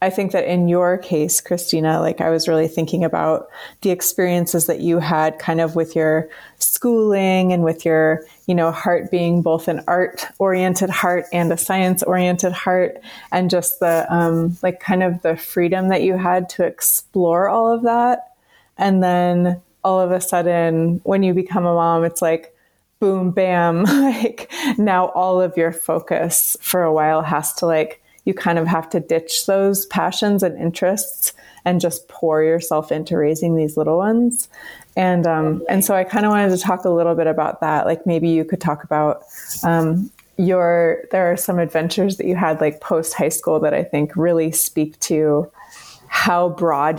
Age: 20-39